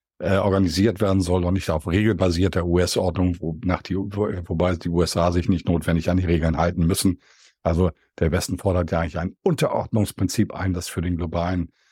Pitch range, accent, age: 90-115 Hz, German, 50-69